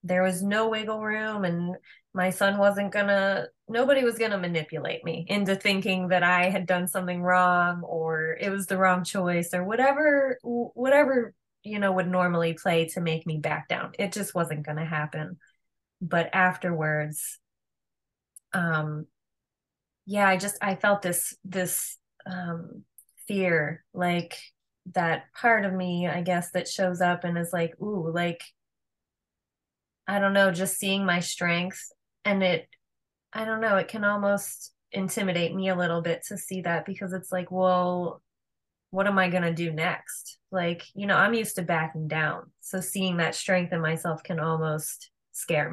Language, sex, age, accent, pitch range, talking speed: English, female, 20-39, American, 170-195 Hz, 165 wpm